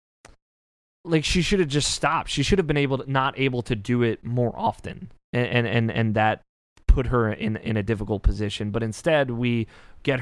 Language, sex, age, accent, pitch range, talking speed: English, male, 20-39, American, 105-130 Hz, 200 wpm